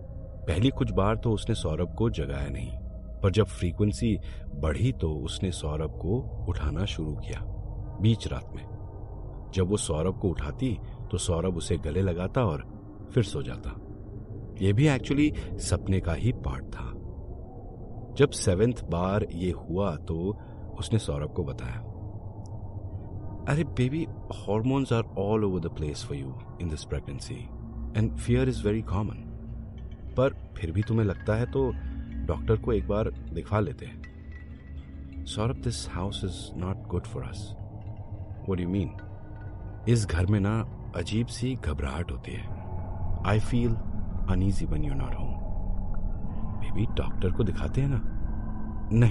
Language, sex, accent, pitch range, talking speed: Hindi, male, native, 90-110 Hz, 145 wpm